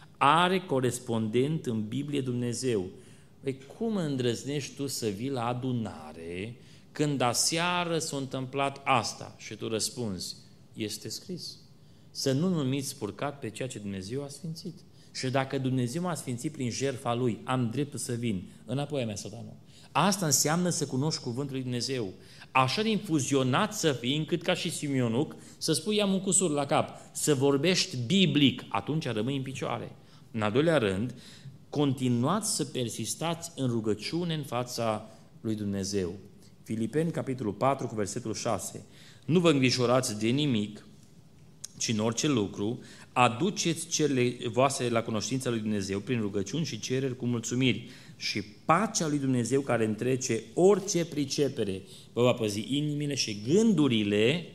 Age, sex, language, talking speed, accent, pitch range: 30-49, male, Romanian, 145 wpm, native, 115-150 Hz